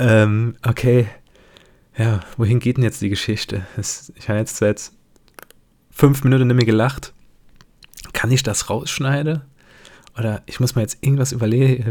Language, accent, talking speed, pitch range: German, German, 145 wpm, 105-125 Hz